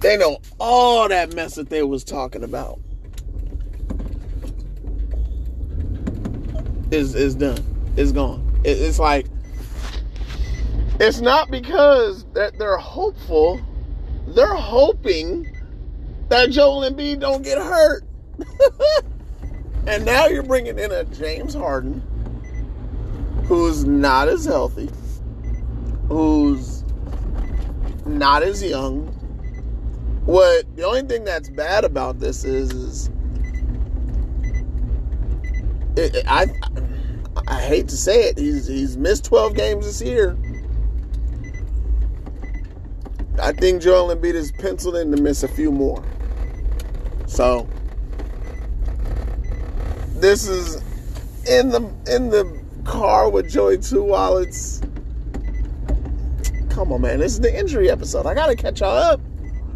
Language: English